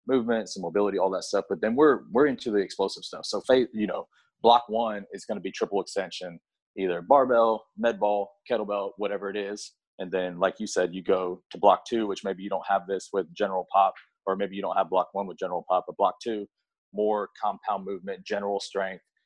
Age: 30-49